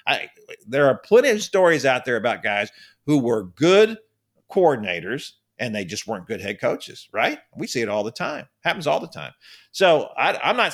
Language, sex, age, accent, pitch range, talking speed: English, male, 50-69, American, 130-200 Hz, 200 wpm